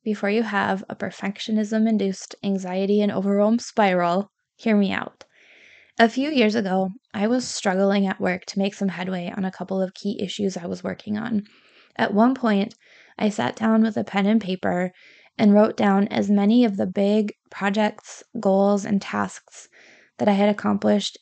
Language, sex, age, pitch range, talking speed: English, female, 20-39, 190-215 Hz, 175 wpm